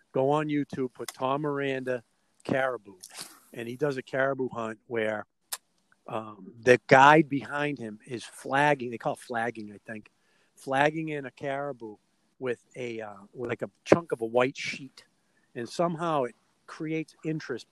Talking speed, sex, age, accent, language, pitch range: 160 wpm, male, 50-69, American, English, 120-160 Hz